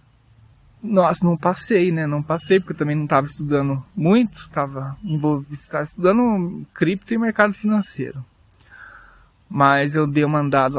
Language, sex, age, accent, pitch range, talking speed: English, male, 20-39, Brazilian, 140-180 Hz, 140 wpm